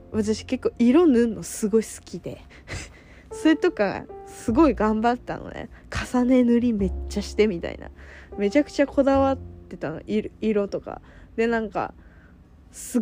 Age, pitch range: 20-39, 185-250 Hz